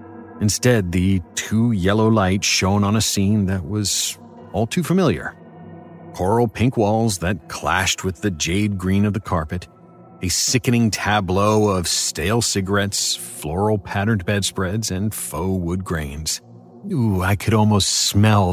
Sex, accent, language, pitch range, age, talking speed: male, American, English, 95-110 Hz, 40-59, 140 wpm